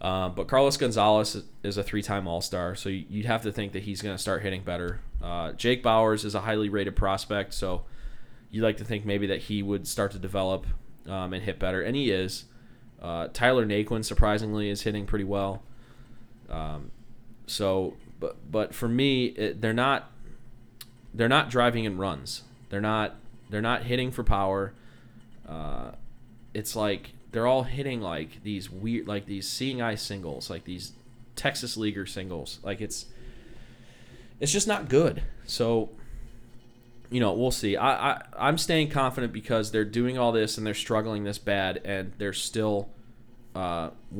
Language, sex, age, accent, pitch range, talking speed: English, male, 20-39, American, 100-120 Hz, 170 wpm